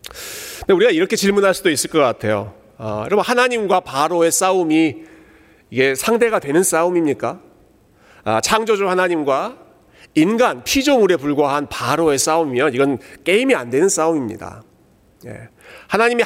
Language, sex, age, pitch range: Korean, male, 40-59, 140-210 Hz